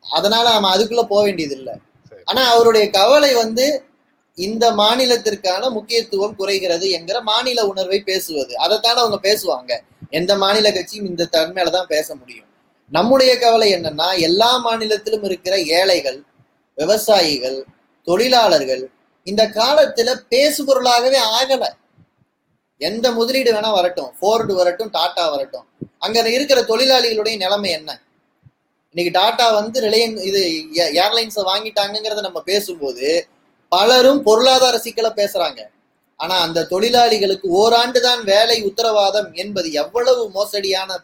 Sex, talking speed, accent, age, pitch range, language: male, 115 wpm, native, 20-39, 190-250 Hz, Tamil